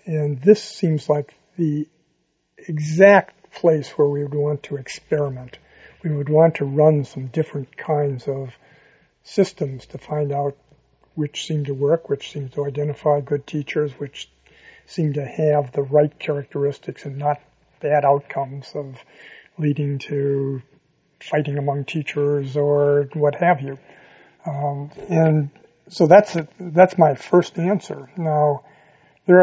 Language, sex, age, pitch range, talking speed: English, male, 50-69, 145-160 Hz, 135 wpm